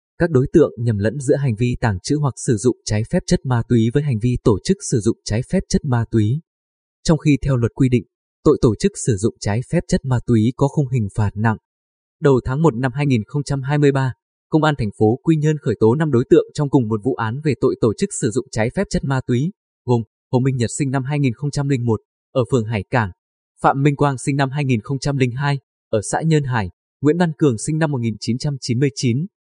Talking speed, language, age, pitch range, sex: 225 wpm, Vietnamese, 20-39, 115-145 Hz, male